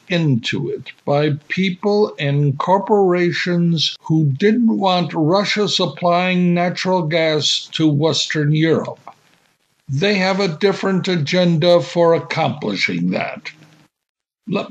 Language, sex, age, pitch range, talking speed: English, male, 60-79, 140-180 Hz, 100 wpm